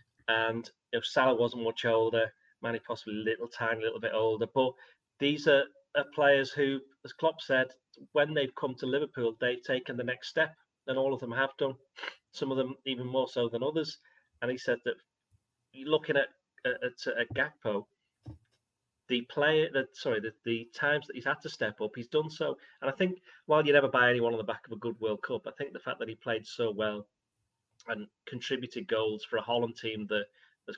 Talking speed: 210 wpm